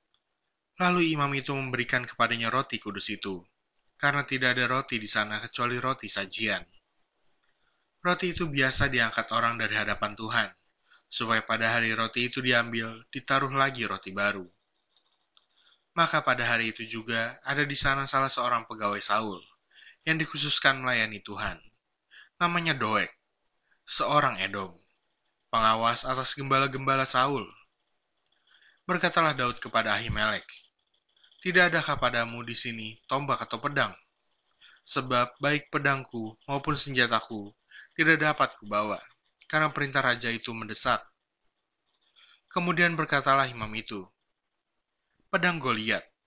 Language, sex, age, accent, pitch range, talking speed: Indonesian, male, 20-39, native, 110-140 Hz, 115 wpm